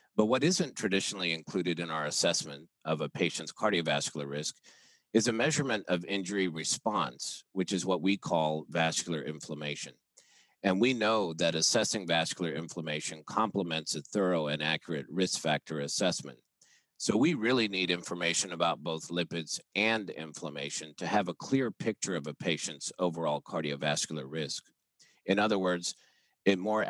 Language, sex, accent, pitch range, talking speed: English, male, American, 80-100 Hz, 150 wpm